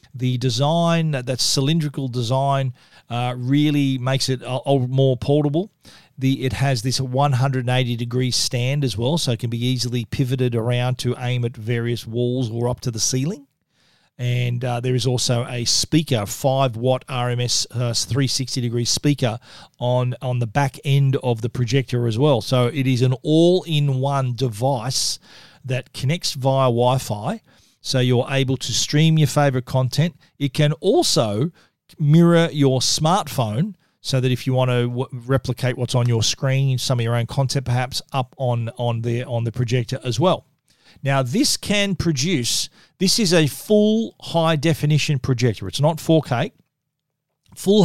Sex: male